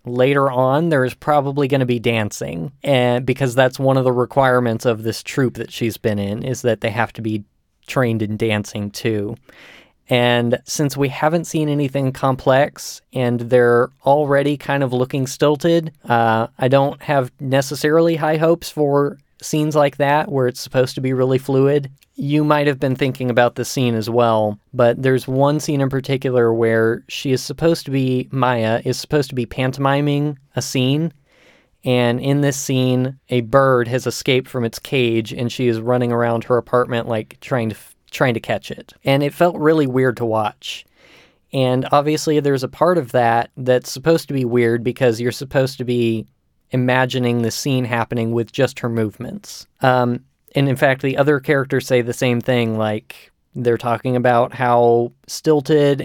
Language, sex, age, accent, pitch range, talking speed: English, male, 20-39, American, 120-140 Hz, 180 wpm